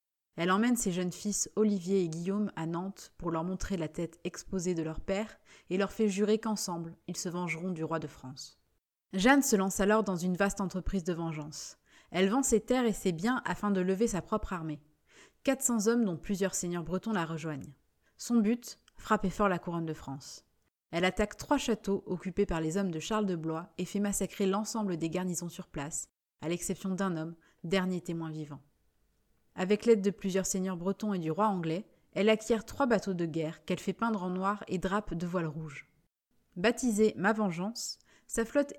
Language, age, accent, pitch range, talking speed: French, 20-39, French, 170-215 Hz, 205 wpm